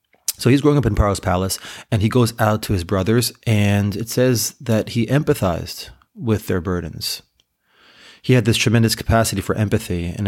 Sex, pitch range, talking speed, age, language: male, 95-115 Hz, 180 wpm, 30-49, English